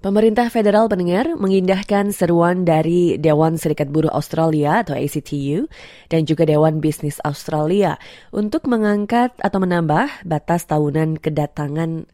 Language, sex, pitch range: English, female, 155-200 Hz